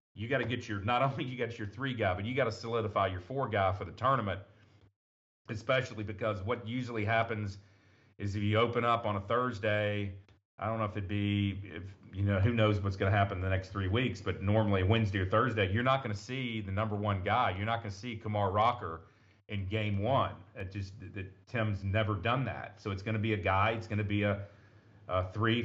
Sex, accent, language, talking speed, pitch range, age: male, American, English, 235 wpm, 100-115 Hz, 40-59